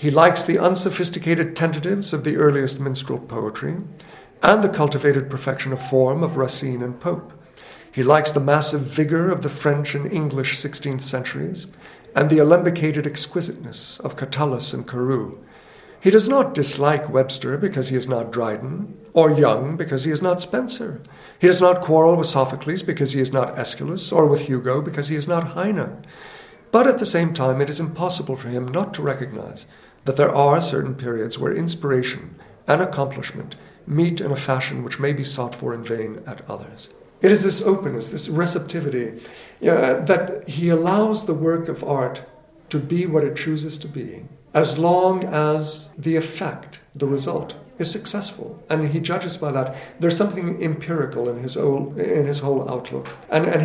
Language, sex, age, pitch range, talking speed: English, male, 50-69, 135-170 Hz, 175 wpm